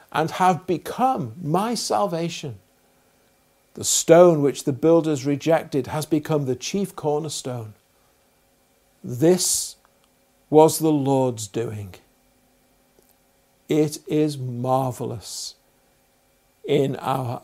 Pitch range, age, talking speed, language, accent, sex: 120-160 Hz, 50-69, 90 wpm, English, British, male